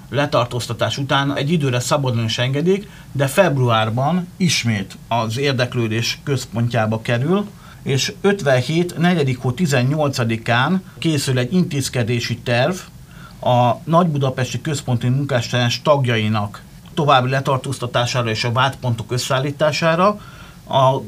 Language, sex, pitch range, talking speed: Hungarian, male, 120-150 Hz, 100 wpm